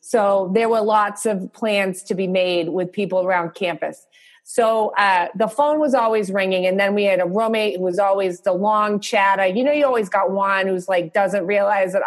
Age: 30-49